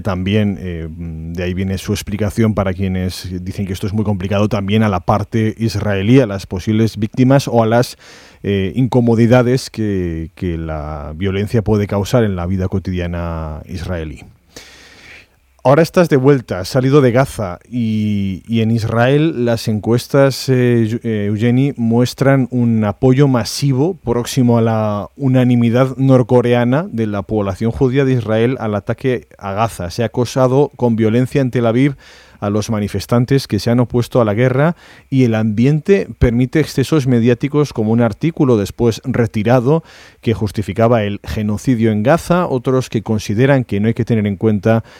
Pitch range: 105-130 Hz